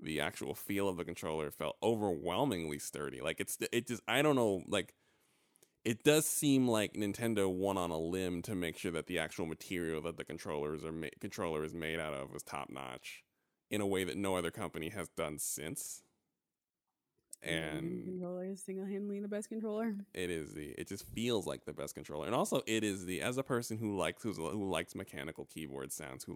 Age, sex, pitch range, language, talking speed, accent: 20-39, male, 80-115 Hz, English, 205 wpm, American